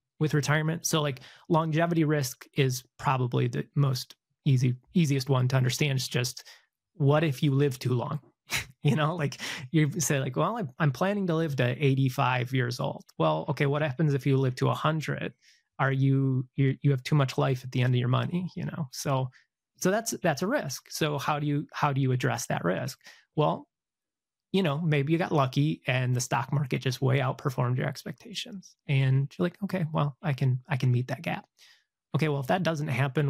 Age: 30-49